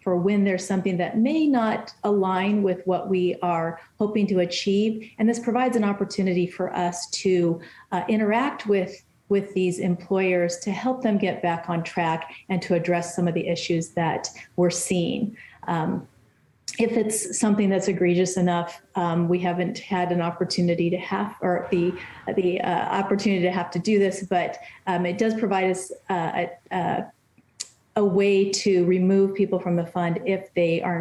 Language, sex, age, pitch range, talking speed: English, female, 40-59, 175-200 Hz, 170 wpm